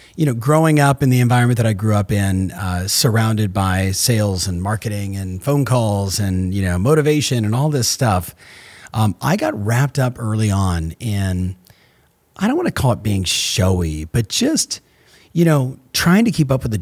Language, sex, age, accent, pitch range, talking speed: English, male, 40-59, American, 95-140 Hz, 195 wpm